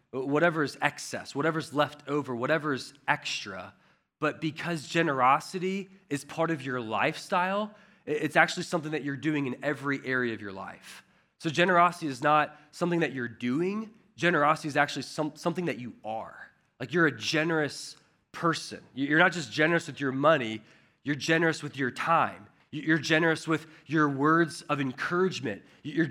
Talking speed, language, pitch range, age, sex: 160 wpm, English, 130-170 Hz, 20-39, male